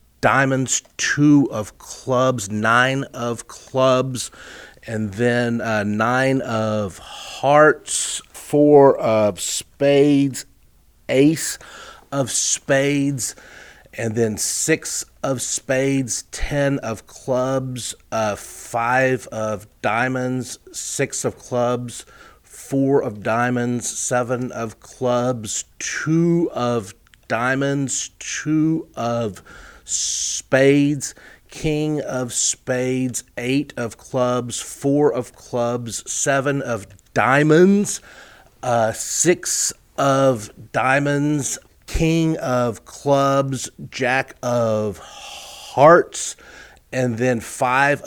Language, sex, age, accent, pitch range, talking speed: English, male, 40-59, American, 115-140 Hz, 90 wpm